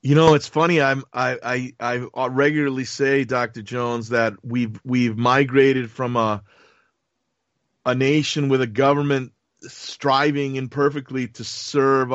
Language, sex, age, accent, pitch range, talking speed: English, male, 40-59, American, 125-145 Hz, 135 wpm